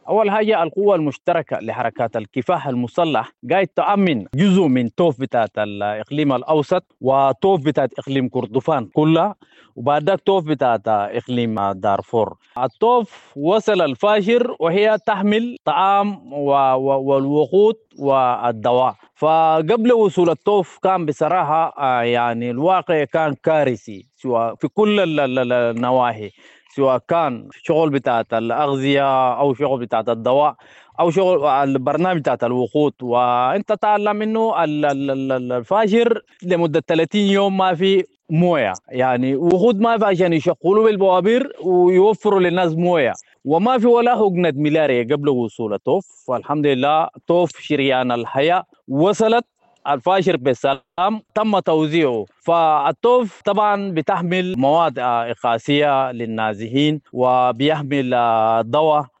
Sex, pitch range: male, 130-190 Hz